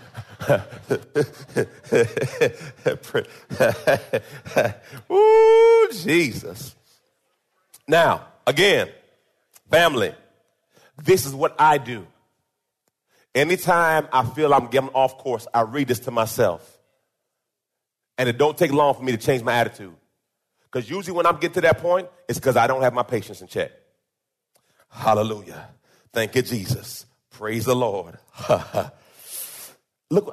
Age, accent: 40-59, American